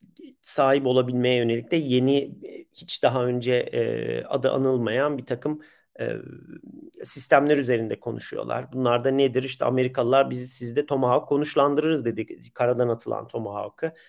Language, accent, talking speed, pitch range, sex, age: Turkish, native, 125 wpm, 115-130 Hz, male, 40-59